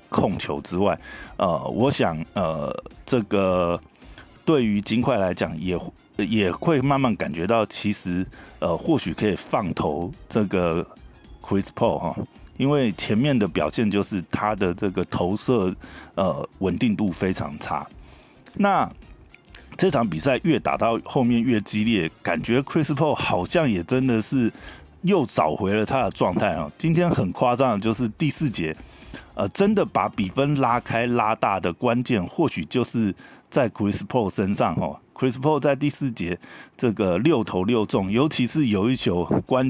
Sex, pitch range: male, 100-130 Hz